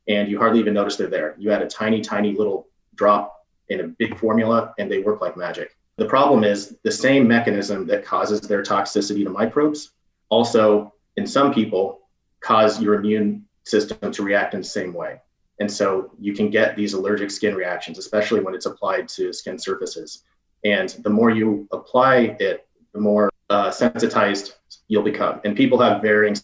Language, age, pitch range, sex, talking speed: English, 30-49, 105-115 Hz, male, 185 wpm